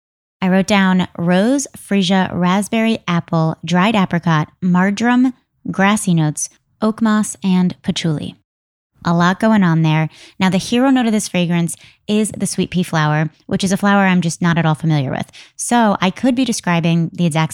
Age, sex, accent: 20-39, female, American